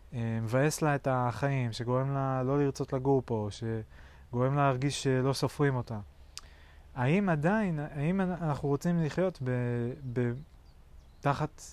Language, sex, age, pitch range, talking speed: Hebrew, male, 20-39, 115-145 Hz, 130 wpm